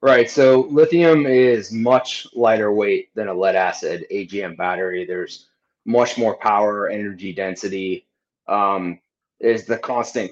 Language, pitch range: English, 100-120 Hz